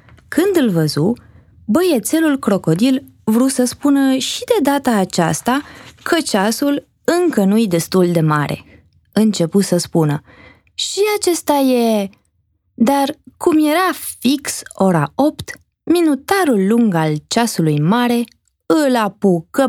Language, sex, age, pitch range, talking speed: Romanian, female, 20-39, 170-260 Hz, 115 wpm